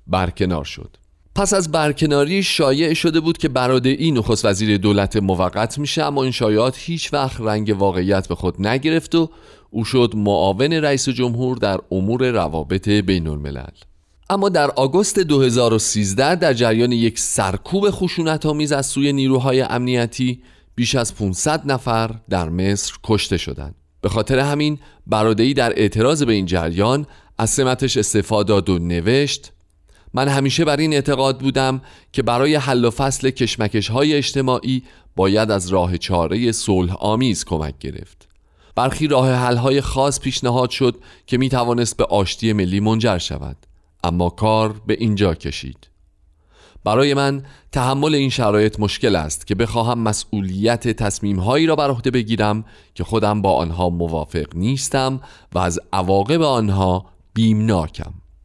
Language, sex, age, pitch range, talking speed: Persian, male, 40-59, 95-135 Hz, 140 wpm